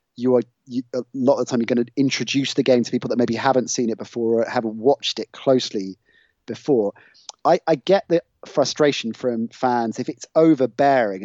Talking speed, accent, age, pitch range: 205 wpm, British, 30-49, 115-140 Hz